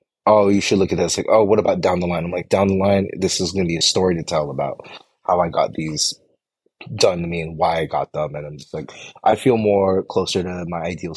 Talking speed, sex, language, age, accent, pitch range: 275 wpm, male, English, 20-39, American, 85-110 Hz